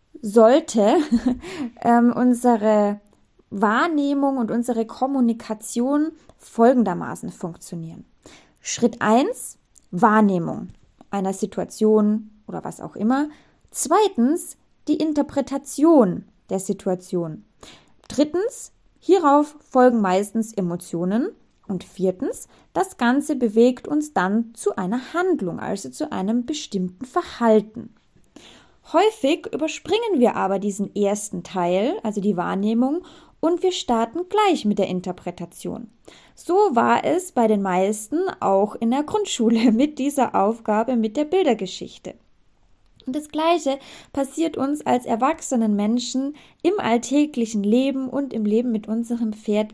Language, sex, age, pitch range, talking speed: German, female, 20-39, 210-295 Hz, 110 wpm